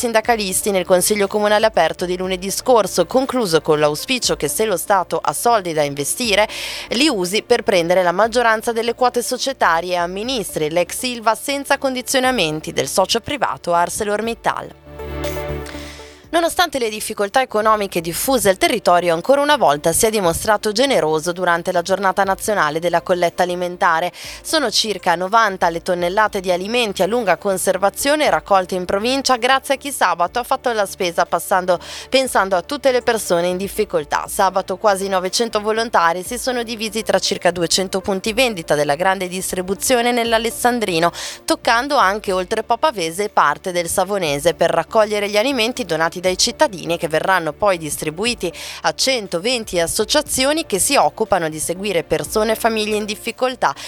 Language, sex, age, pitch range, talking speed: Italian, female, 20-39, 175-235 Hz, 150 wpm